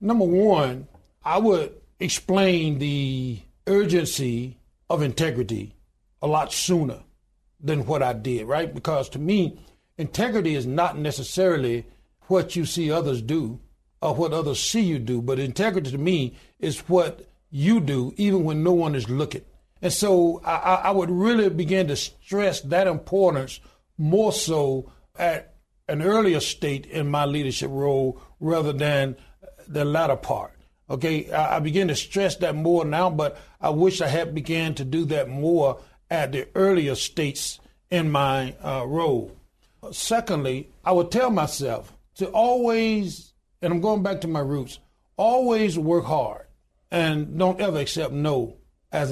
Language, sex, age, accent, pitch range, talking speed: English, male, 60-79, American, 140-185 Hz, 155 wpm